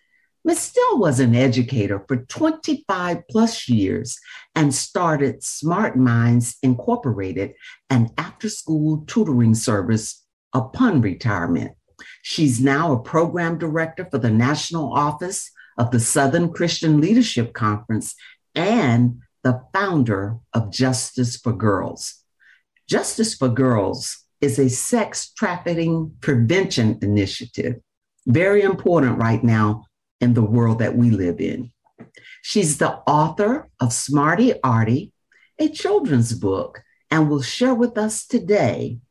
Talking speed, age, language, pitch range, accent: 120 wpm, 60-79, English, 115-170 Hz, American